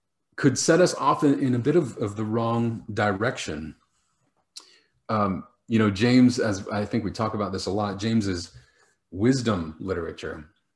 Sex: male